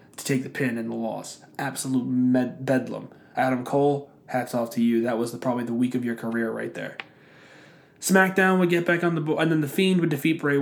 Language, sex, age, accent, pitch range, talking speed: English, male, 20-39, American, 120-140 Hz, 230 wpm